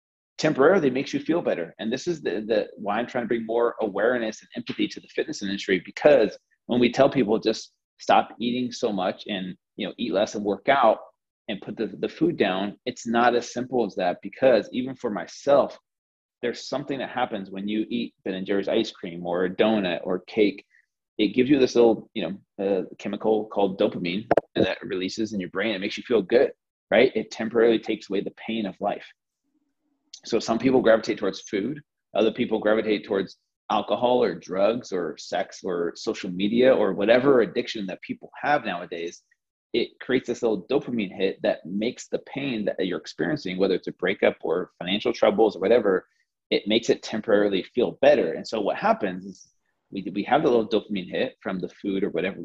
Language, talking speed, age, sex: English, 200 wpm, 30-49, male